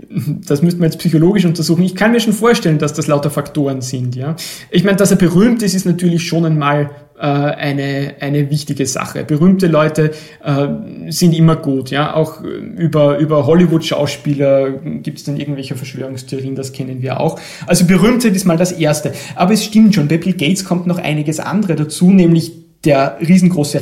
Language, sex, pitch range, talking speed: German, male, 145-180 Hz, 185 wpm